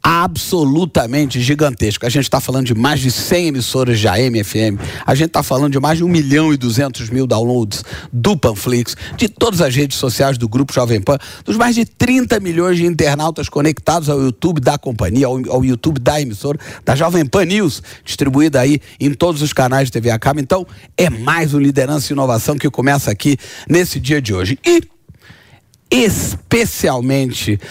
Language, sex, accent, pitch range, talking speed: English, male, Brazilian, 130-170 Hz, 180 wpm